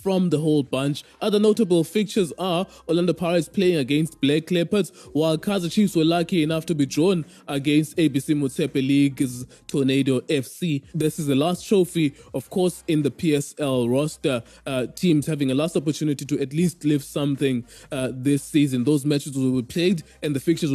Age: 20-39